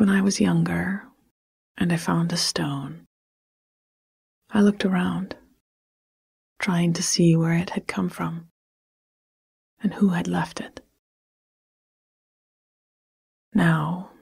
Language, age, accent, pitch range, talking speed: English, 30-49, American, 170-205 Hz, 110 wpm